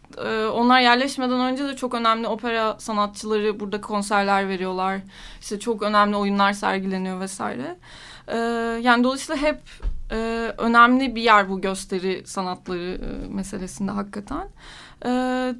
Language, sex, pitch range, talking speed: Turkish, female, 205-250 Hz, 125 wpm